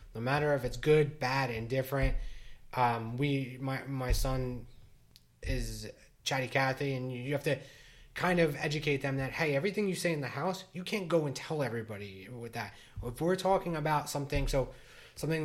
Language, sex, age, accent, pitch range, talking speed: English, male, 20-39, American, 115-145 Hz, 185 wpm